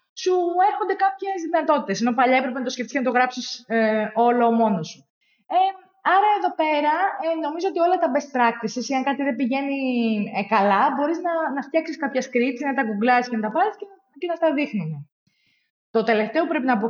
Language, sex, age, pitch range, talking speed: Greek, female, 20-39, 215-300 Hz, 200 wpm